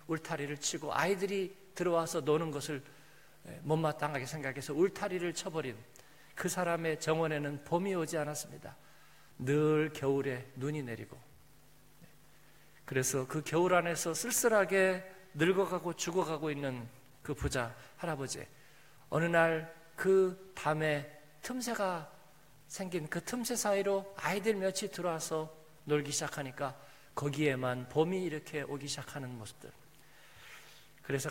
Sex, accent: male, native